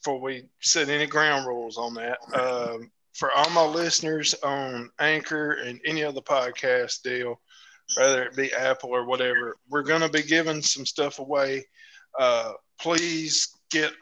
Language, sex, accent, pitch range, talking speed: English, male, American, 130-160 Hz, 160 wpm